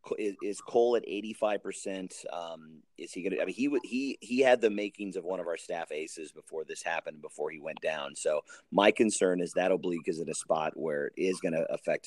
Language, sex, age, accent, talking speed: English, male, 30-49, American, 235 wpm